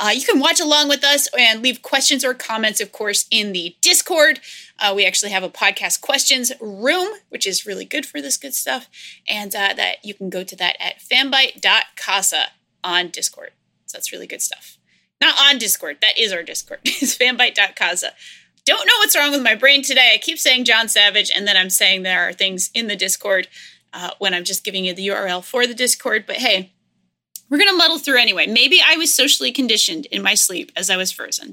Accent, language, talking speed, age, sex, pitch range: American, English, 215 wpm, 20-39, female, 205-295 Hz